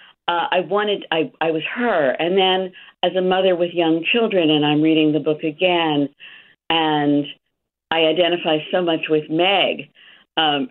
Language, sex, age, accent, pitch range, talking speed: English, female, 50-69, American, 145-180 Hz, 160 wpm